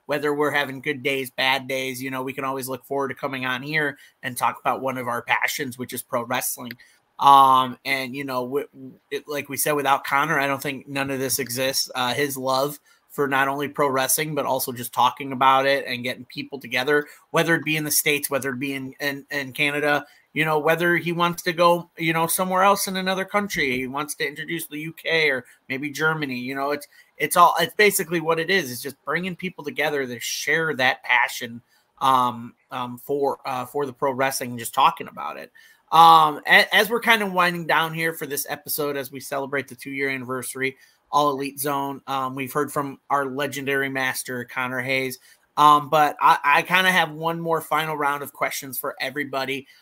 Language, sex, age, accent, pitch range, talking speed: English, male, 30-49, American, 135-155 Hz, 215 wpm